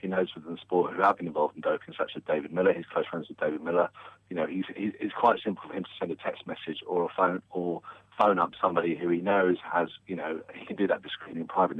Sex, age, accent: male, 50-69, British